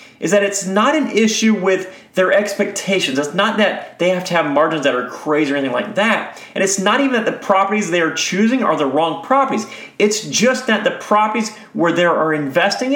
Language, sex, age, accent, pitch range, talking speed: English, male, 30-49, American, 150-220 Hz, 220 wpm